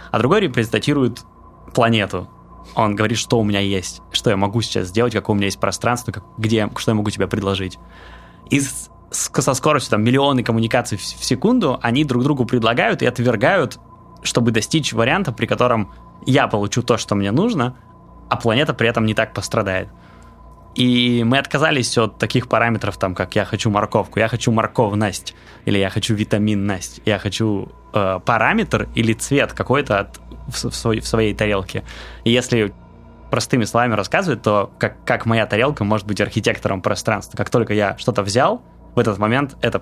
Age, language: 20-39, Russian